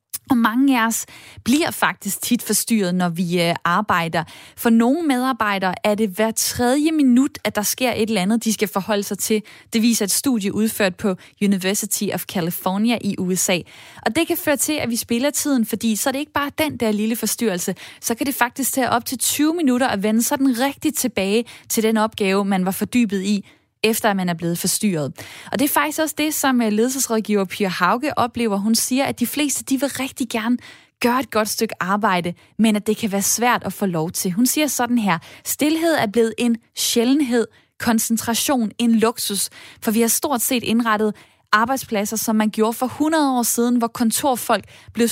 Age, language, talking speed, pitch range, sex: 20-39, Danish, 200 wpm, 200-255 Hz, female